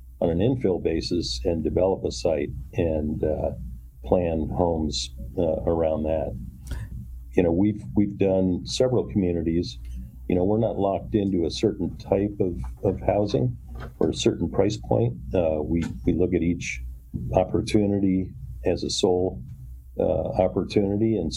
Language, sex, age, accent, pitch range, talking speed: English, male, 50-69, American, 65-100 Hz, 145 wpm